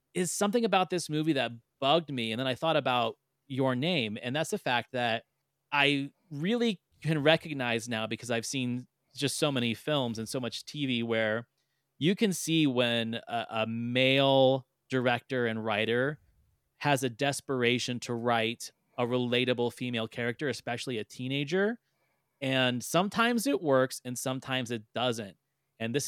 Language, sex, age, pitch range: English, male, 30-49, 120-145 Hz